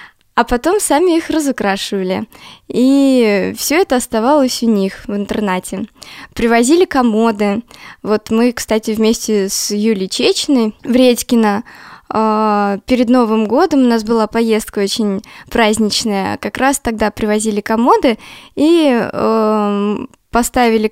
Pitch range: 210-250 Hz